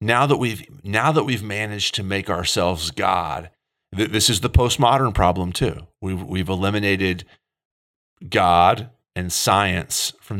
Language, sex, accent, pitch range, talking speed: English, male, American, 90-110 Hz, 145 wpm